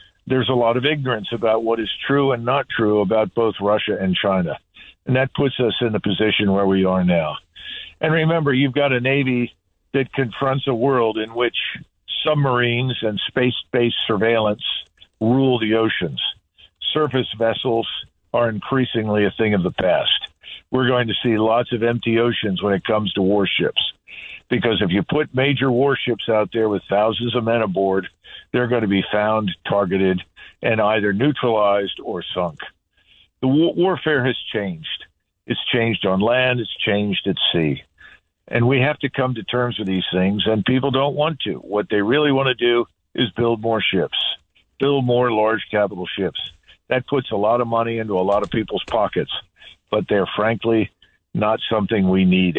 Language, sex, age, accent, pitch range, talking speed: English, male, 50-69, American, 105-130 Hz, 175 wpm